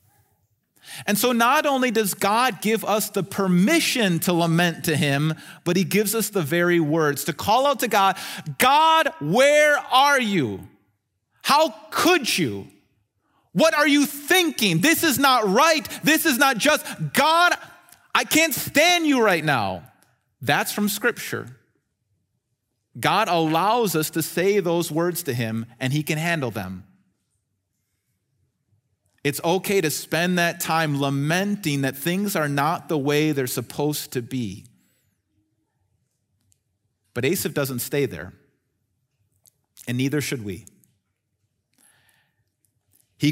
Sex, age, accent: male, 30-49, American